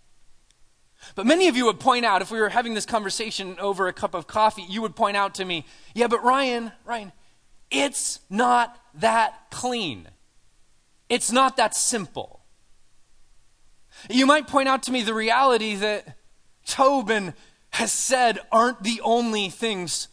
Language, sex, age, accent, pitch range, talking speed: English, male, 30-49, American, 175-245 Hz, 155 wpm